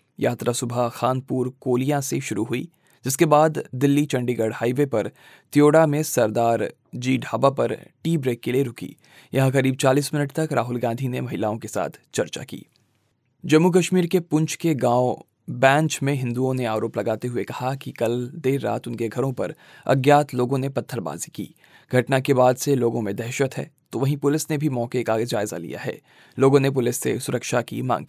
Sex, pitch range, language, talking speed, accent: male, 120-145 Hz, Hindi, 190 wpm, native